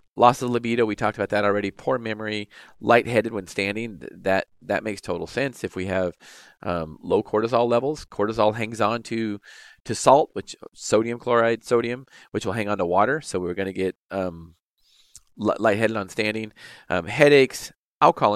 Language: English